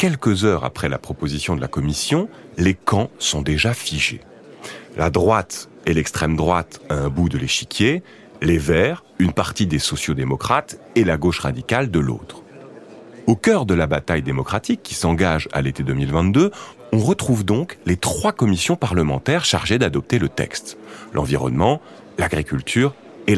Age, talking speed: 40-59, 155 wpm